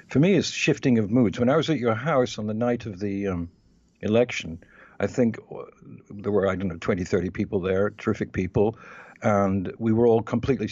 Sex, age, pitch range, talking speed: male, 60-79, 100-130 Hz, 205 wpm